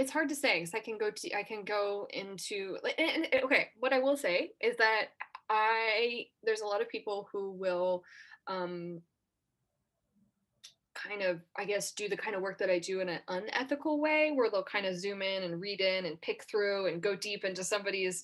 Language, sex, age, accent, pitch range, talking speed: English, female, 10-29, American, 180-230 Hz, 210 wpm